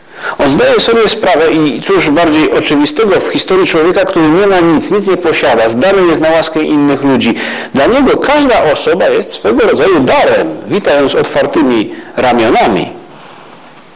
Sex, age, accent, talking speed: male, 40-59, native, 150 wpm